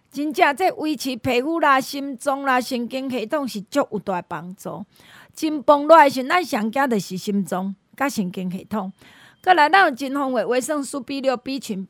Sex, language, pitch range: female, Chinese, 215-295 Hz